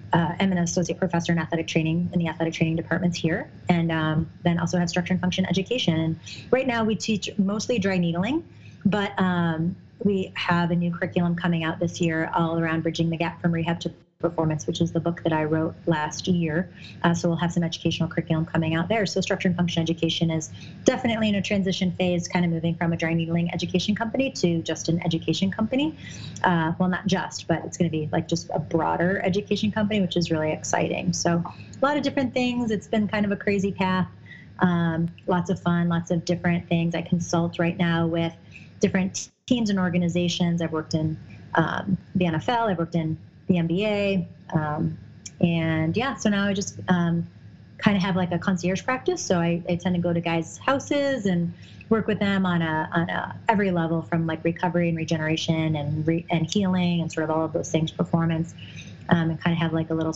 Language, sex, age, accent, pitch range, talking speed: English, female, 30-49, American, 165-190 Hz, 210 wpm